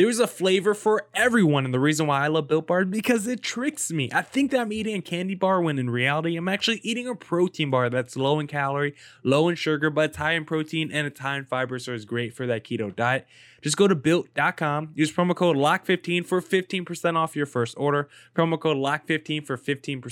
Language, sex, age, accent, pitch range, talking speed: English, male, 20-39, American, 130-170 Hz, 235 wpm